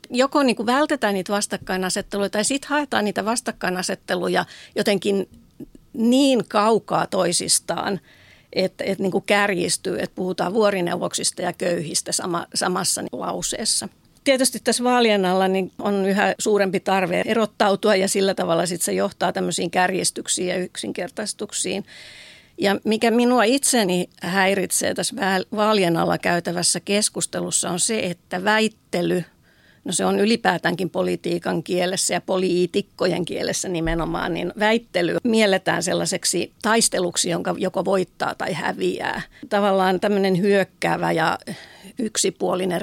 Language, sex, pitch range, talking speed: Finnish, female, 180-215 Hz, 120 wpm